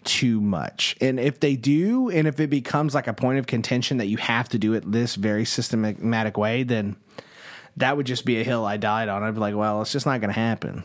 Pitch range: 110-150 Hz